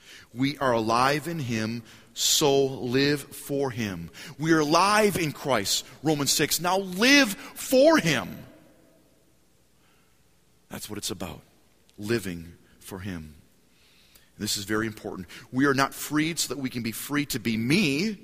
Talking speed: 145 wpm